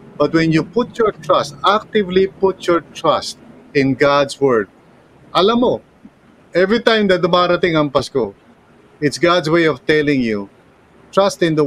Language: English